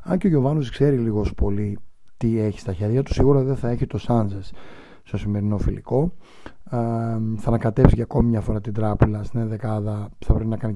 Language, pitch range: Greek, 105-130 Hz